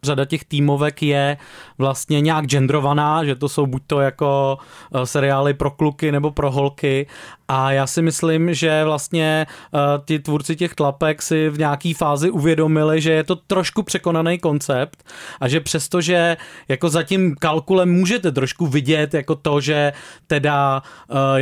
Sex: male